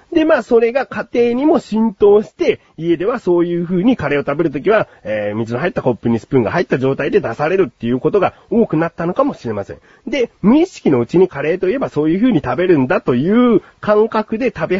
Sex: male